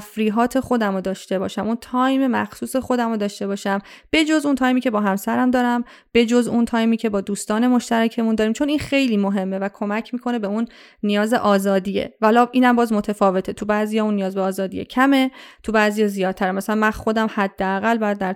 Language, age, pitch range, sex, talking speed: Persian, 30-49, 200-235 Hz, female, 185 wpm